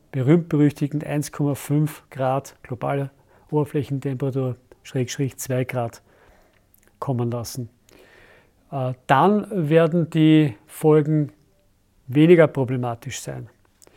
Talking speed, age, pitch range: 75 wpm, 50-69, 140-160 Hz